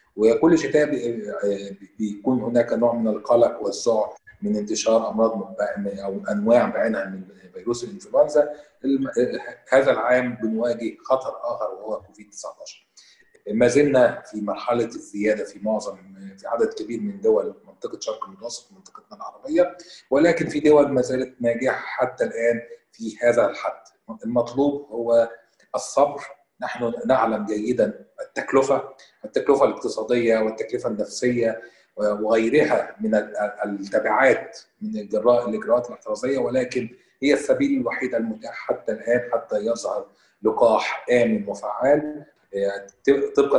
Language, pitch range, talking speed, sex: Arabic, 105-140 Hz, 115 wpm, male